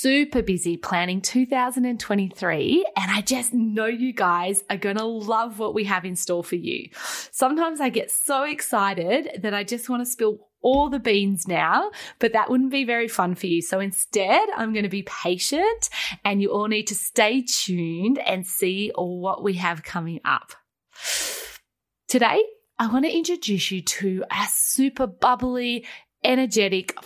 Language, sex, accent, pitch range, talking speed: English, female, Australian, 190-260 Hz, 170 wpm